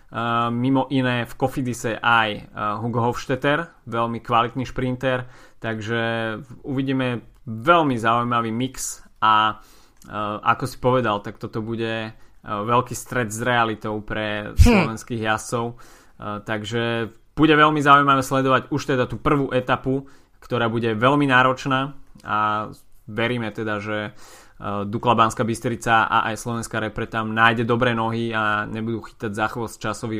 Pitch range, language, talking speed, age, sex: 110-130 Hz, Slovak, 135 wpm, 20-39, male